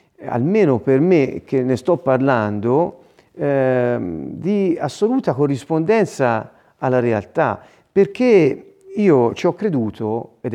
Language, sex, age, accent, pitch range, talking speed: Italian, male, 40-59, native, 125-180 Hz, 110 wpm